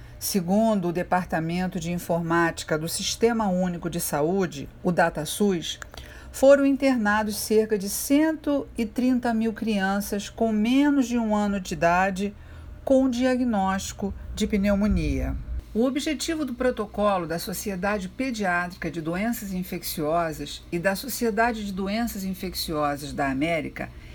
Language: Portuguese